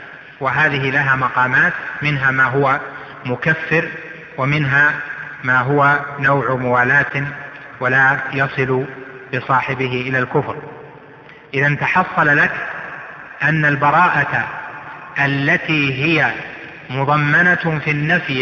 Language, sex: Arabic, male